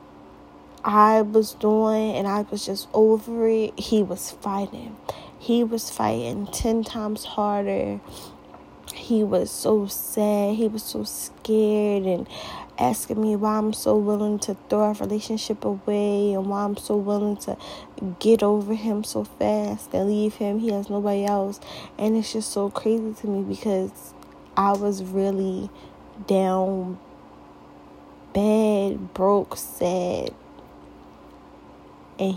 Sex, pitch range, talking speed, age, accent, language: female, 190-215 Hz, 135 wpm, 10-29, American, English